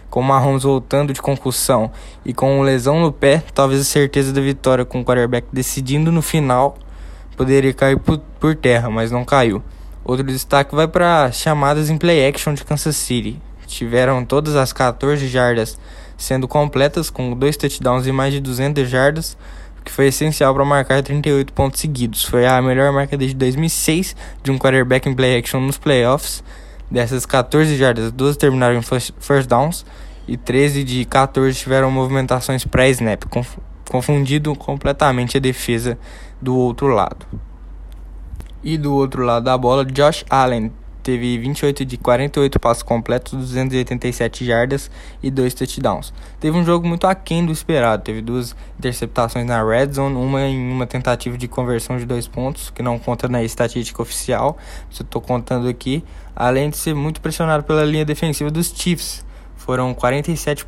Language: Portuguese